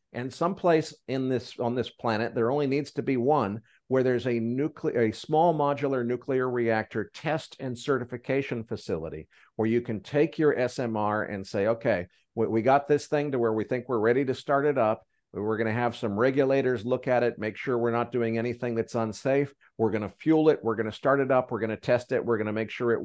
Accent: American